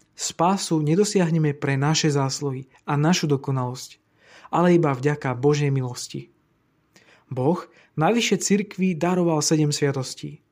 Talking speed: 110 wpm